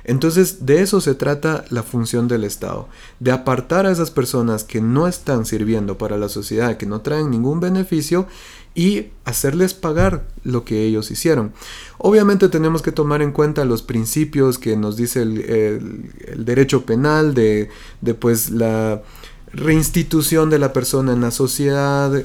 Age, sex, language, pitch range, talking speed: 30-49, male, English, 115-155 Hz, 160 wpm